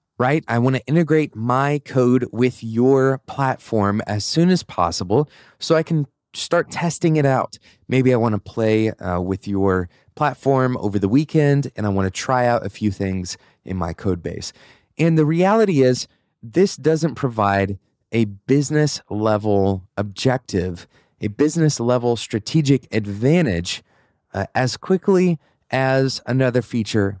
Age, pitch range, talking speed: 30-49, 105-145 Hz, 150 wpm